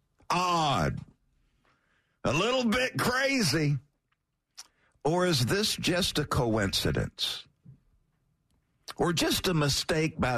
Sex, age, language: male, 50-69, English